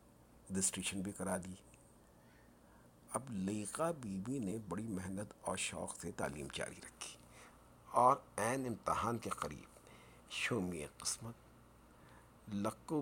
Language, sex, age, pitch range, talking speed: Urdu, male, 50-69, 75-110 Hz, 115 wpm